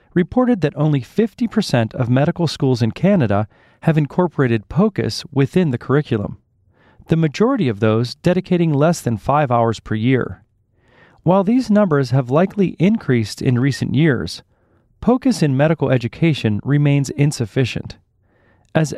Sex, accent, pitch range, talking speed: male, American, 115-170 Hz, 135 wpm